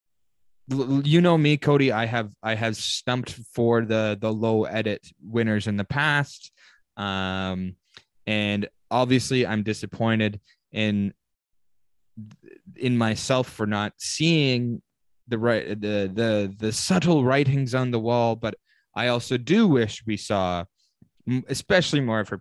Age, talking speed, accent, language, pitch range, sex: 20-39, 135 wpm, American, English, 90-115 Hz, male